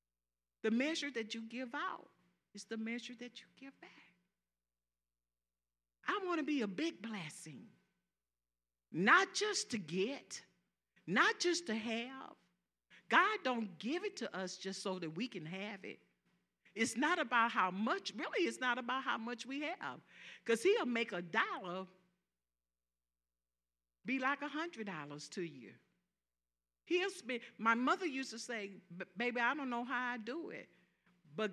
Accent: American